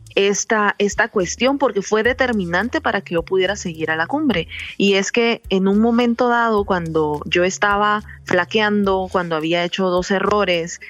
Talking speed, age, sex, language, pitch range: 165 wpm, 30-49, female, Spanish, 170-210 Hz